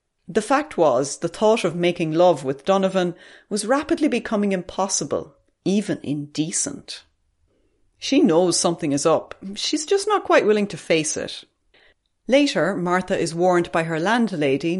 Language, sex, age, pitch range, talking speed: English, female, 30-49, 155-210 Hz, 145 wpm